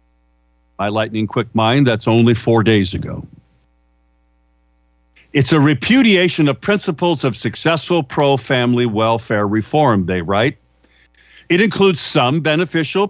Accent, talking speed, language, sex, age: American, 115 wpm, English, male, 50-69